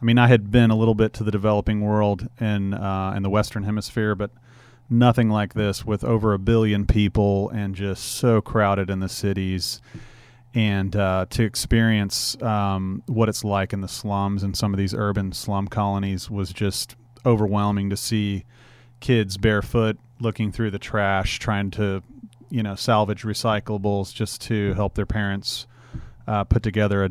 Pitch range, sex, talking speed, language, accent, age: 100-115 Hz, male, 175 wpm, English, American, 30-49